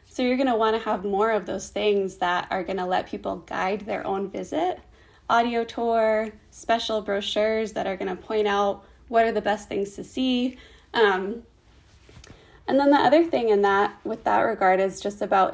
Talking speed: 200 wpm